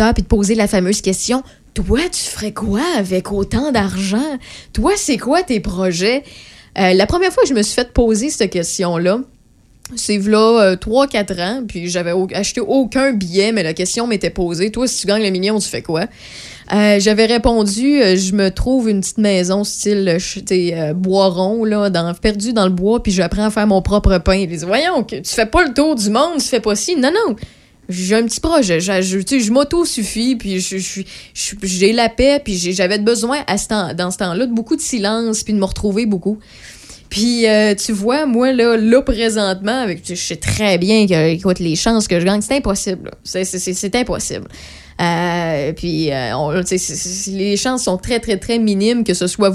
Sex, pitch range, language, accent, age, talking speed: female, 185-230 Hz, French, Canadian, 20-39, 220 wpm